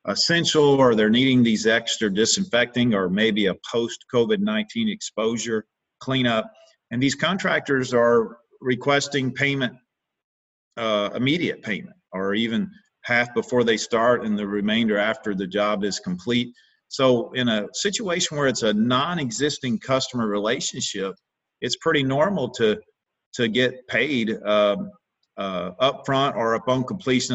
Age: 50-69